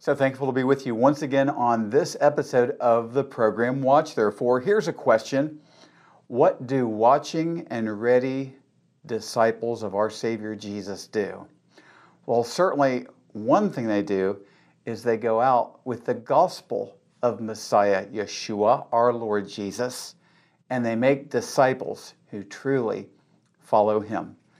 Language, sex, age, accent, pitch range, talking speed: English, male, 50-69, American, 115-150 Hz, 140 wpm